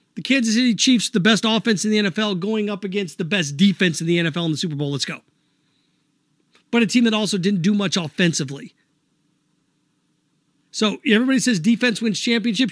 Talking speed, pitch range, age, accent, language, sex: 190 wpm, 170-220 Hz, 40-59, American, English, male